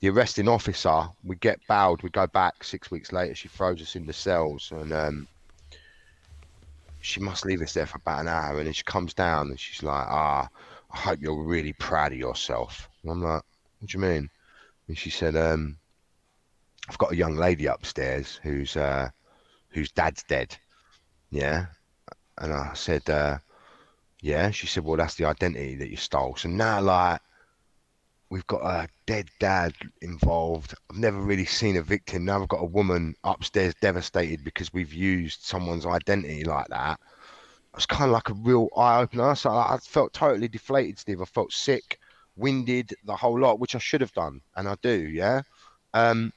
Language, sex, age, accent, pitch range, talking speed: English, male, 30-49, British, 80-105 Hz, 180 wpm